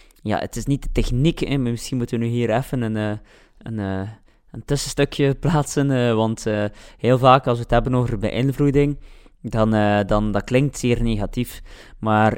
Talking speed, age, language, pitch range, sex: 170 wpm, 20-39, Dutch, 105-125 Hz, male